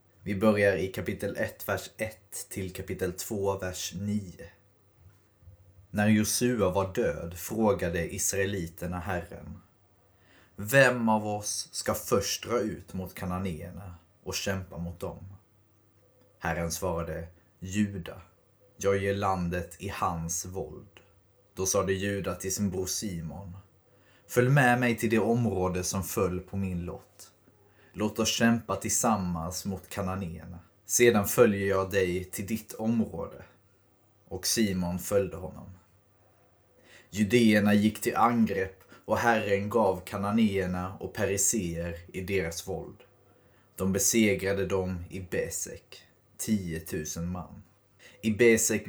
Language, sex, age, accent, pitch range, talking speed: Swedish, male, 30-49, native, 90-105 Hz, 125 wpm